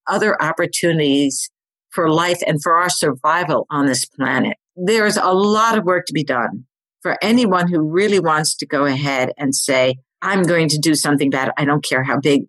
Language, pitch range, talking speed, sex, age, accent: English, 145-180 Hz, 190 wpm, female, 50-69, American